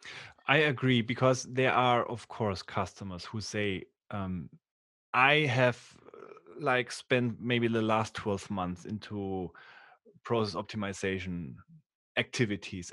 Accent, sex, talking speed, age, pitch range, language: German, male, 110 wpm, 30-49, 105-130 Hz, English